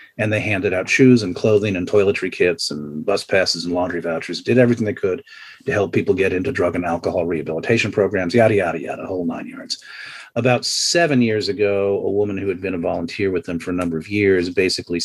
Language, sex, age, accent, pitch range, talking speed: English, male, 40-59, American, 95-120 Hz, 220 wpm